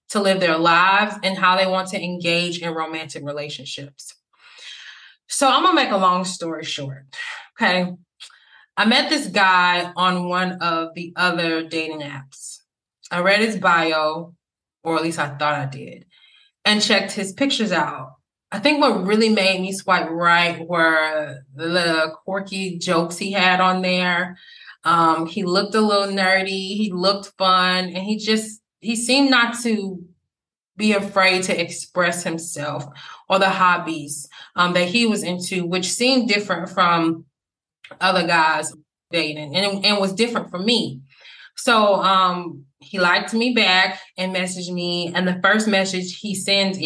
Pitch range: 165-200 Hz